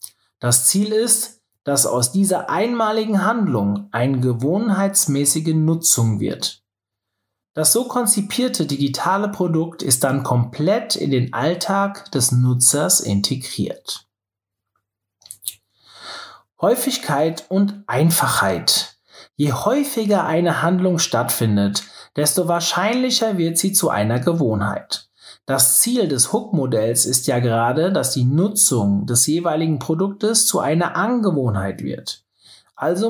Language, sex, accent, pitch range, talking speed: German, male, German, 125-200 Hz, 105 wpm